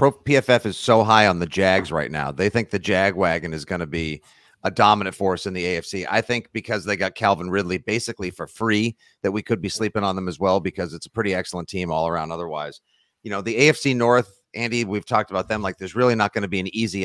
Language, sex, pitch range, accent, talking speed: English, male, 100-130 Hz, American, 255 wpm